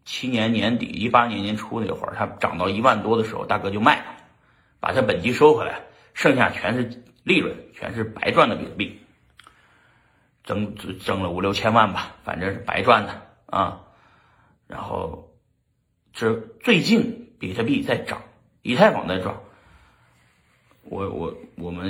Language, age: Chinese, 50-69